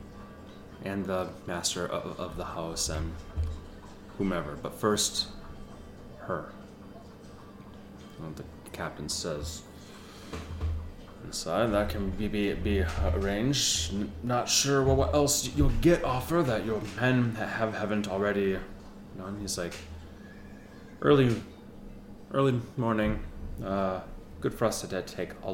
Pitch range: 80-100 Hz